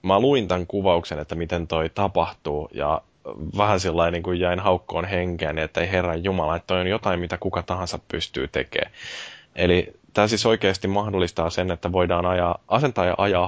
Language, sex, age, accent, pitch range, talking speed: Finnish, male, 20-39, native, 80-95 Hz, 185 wpm